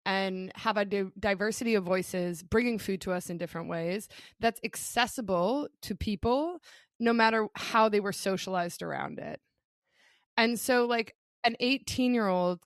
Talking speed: 155 wpm